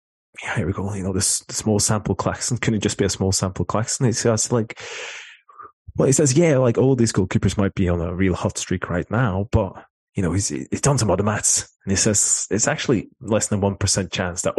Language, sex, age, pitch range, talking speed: English, male, 20-39, 85-110 Hz, 245 wpm